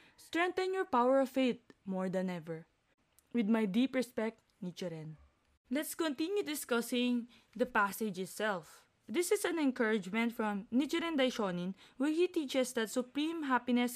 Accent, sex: Filipino, female